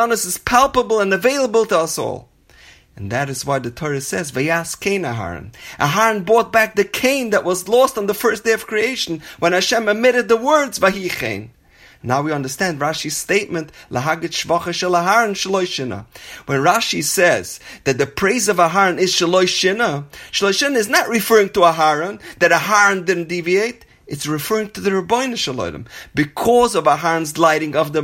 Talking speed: 165 wpm